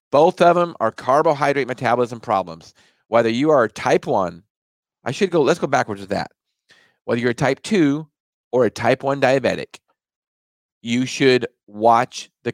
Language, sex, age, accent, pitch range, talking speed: English, male, 40-59, American, 105-135 Hz, 160 wpm